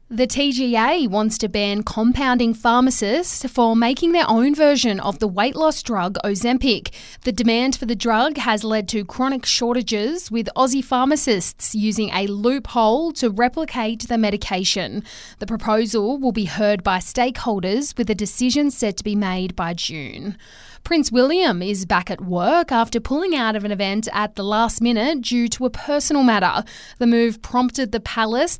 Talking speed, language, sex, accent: 170 wpm, English, female, Australian